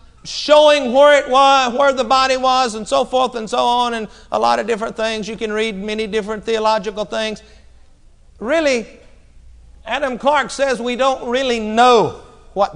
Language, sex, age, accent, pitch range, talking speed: English, male, 50-69, American, 185-255 Hz, 170 wpm